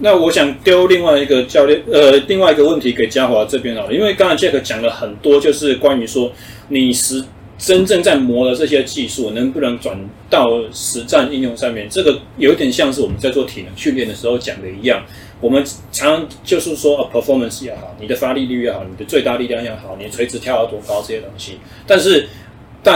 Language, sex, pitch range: Chinese, male, 115-150 Hz